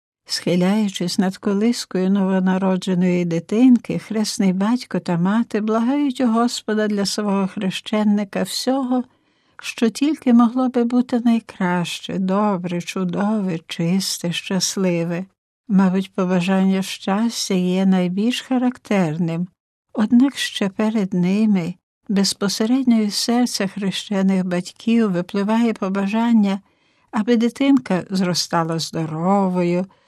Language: Ukrainian